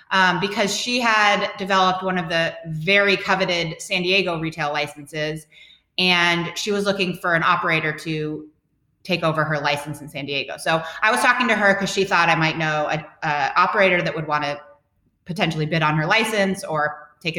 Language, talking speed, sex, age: English, 185 wpm, female, 30-49